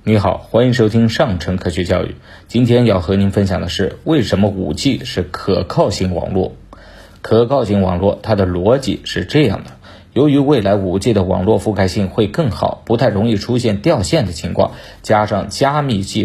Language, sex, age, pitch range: Chinese, male, 50-69, 95-120 Hz